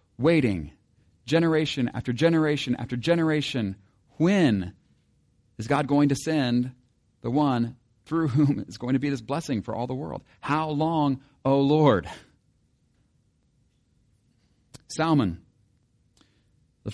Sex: male